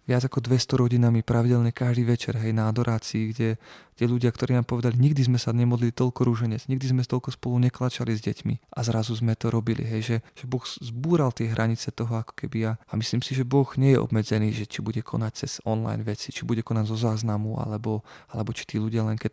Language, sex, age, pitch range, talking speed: Slovak, male, 20-39, 115-125 Hz, 225 wpm